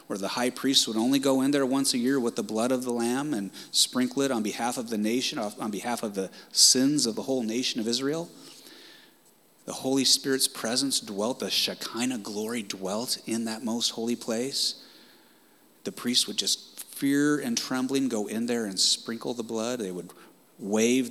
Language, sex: English, male